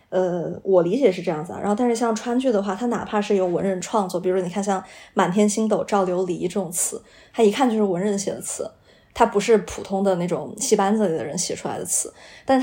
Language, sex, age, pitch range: Chinese, female, 20-39, 185-210 Hz